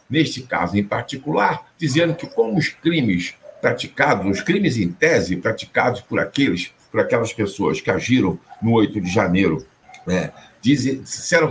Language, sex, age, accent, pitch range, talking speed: Portuguese, male, 60-79, Brazilian, 115-165 Hz, 145 wpm